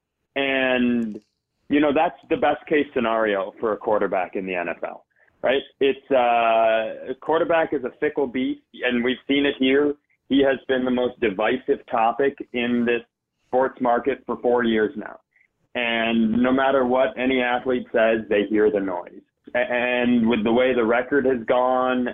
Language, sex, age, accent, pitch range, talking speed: English, male, 30-49, American, 110-135 Hz, 170 wpm